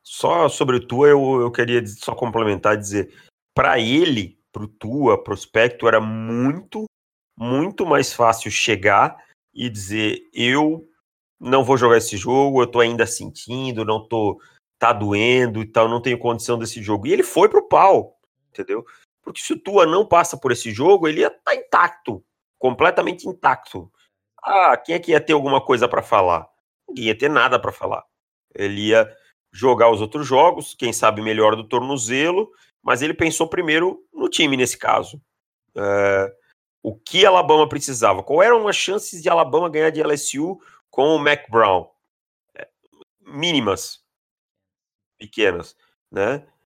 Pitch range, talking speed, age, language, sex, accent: 115-175 Hz, 160 wpm, 40-59, Portuguese, male, Brazilian